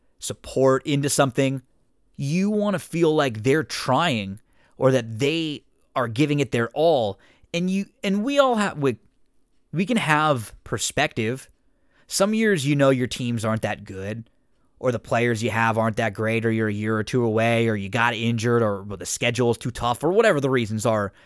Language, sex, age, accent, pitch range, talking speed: English, male, 20-39, American, 115-150 Hz, 190 wpm